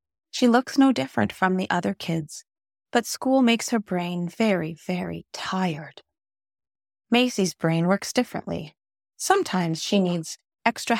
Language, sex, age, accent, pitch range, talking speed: English, female, 30-49, American, 155-210 Hz, 130 wpm